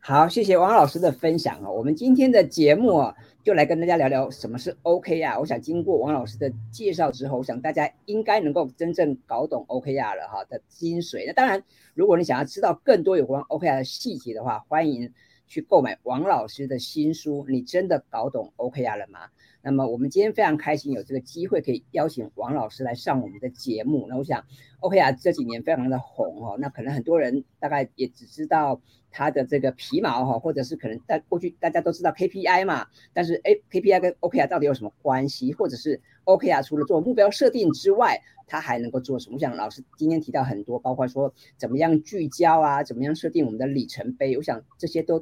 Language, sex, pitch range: Chinese, female, 130-170 Hz